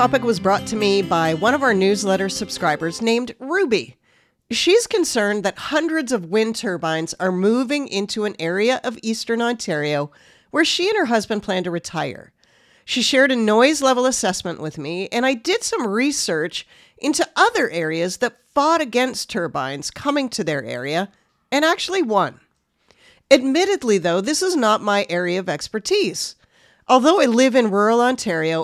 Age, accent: 40-59, American